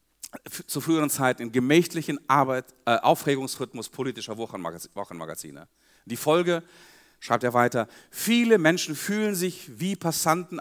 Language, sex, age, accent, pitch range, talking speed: German, male, 40-59, German, 115-170 Hz, 120 wpm